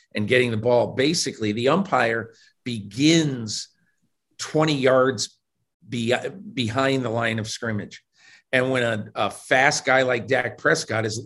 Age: 50-69